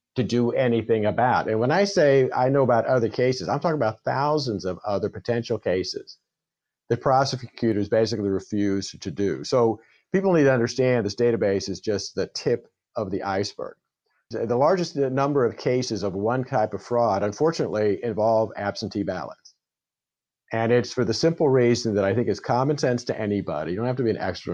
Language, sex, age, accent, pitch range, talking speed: English, male, 50-69, American, 105-130 Hz, 185 wpm